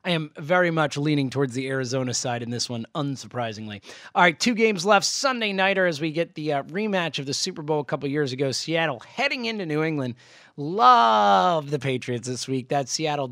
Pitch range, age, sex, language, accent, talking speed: 140-185 Hz, 30-49, male, English, American, 205 wpm